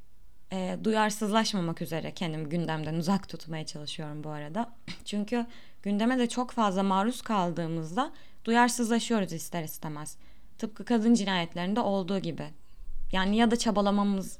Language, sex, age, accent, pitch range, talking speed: Turkish, female, 20-39, native, 175-240 Hz, 115 wpm